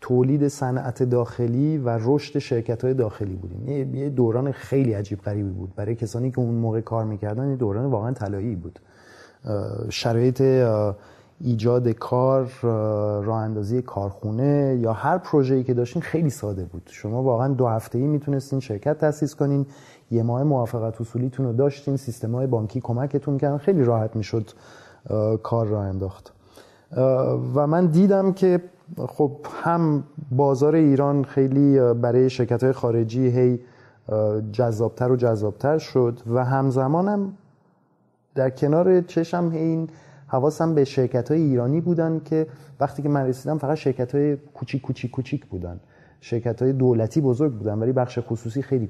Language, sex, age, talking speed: Persian, male, 30-49, 140 wpm